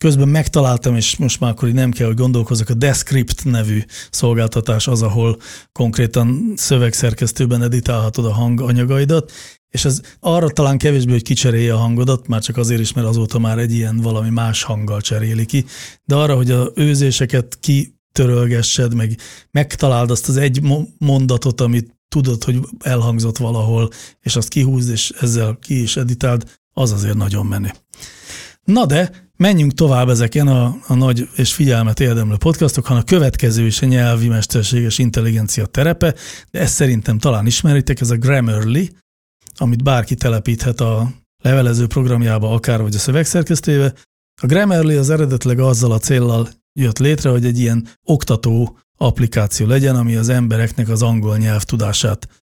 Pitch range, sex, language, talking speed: 115-135 Hz, male, Hungarian, 155 wpm